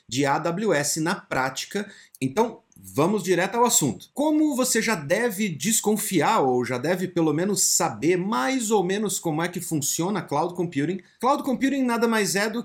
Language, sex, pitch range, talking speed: Portuguese, male, 160-220 Hz, 165 wpm